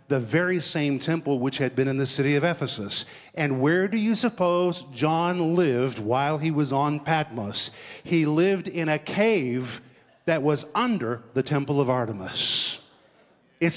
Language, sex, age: English, male, 50-69